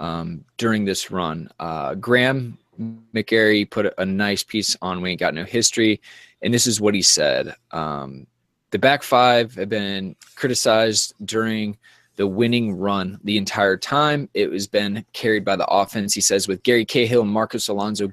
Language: English